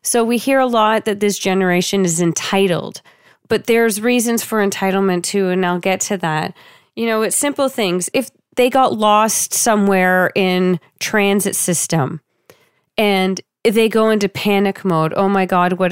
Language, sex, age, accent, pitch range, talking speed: English, female, 40-59, American, 185-220 Hz, 165 wpm